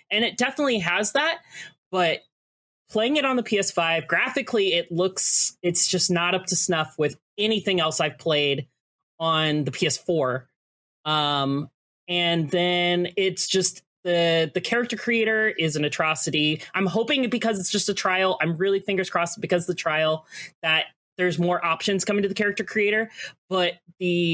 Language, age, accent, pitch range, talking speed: English, 30-49, American, 155-195 Hz, 165 wpm